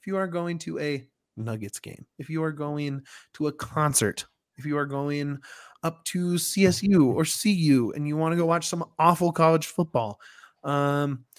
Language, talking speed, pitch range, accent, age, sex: English, 185 wpm, 115-155 Hz, American, 20-39, male